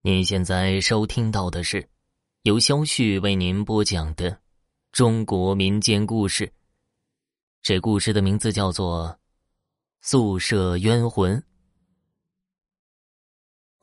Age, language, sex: 20-39, Chinese, male